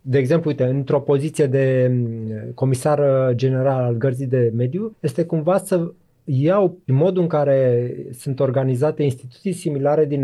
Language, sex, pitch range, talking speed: Romanian, male, 130-165 Hz, 140 wpm